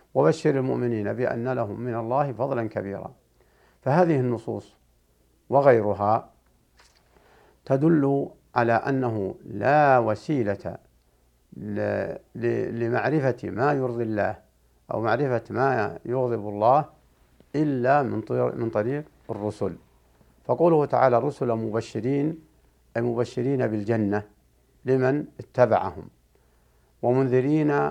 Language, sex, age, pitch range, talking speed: Arabic, male, 60-79, 95-130 Hz, 85 wpm